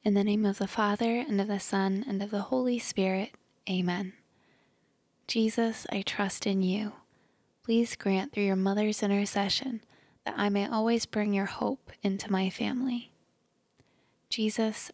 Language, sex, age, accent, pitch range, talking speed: English, female, 20-39, American, 195-220 Hz, 155 wpm